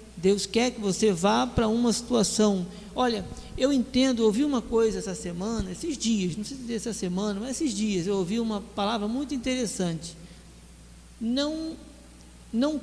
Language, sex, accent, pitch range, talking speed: Portuguese, male, Brazilian, 200-250 Hz, 170 wpm